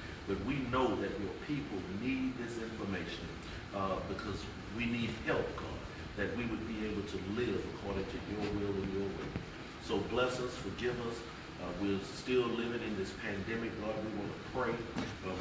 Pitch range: 100-115 Hz